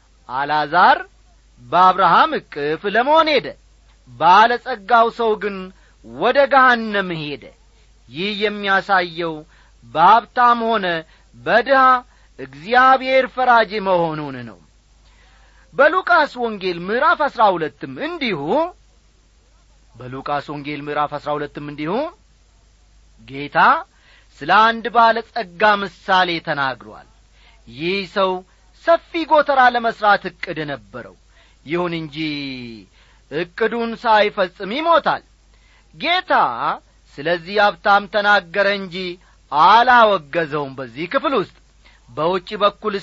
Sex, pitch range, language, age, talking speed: male, 150-230 Hz, Amharic, 40-59, 80 wpm